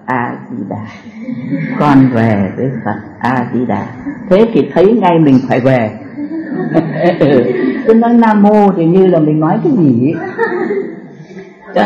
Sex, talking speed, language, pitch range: female, 130 wpm, Vietnamese, 155-210 Hz